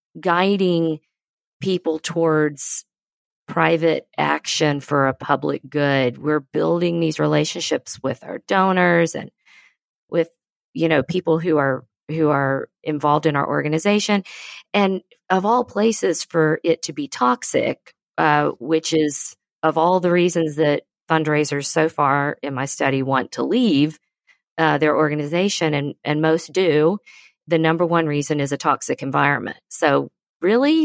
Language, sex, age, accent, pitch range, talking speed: English, female, 50-69, American, 150-180 Hz, 140 wpm